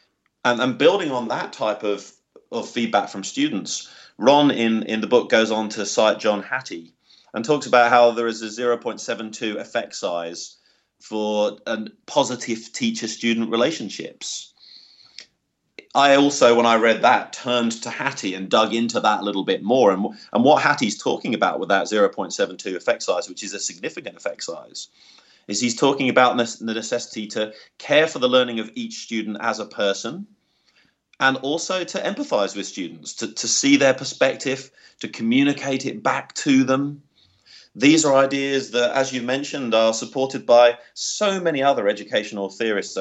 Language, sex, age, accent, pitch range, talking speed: English, male, 30-49, British, 110-135 Hz, 165 wpm